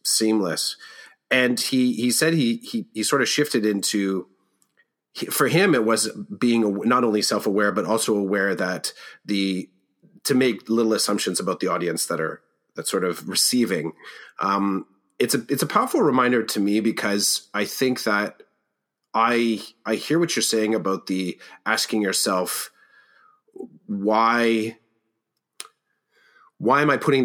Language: English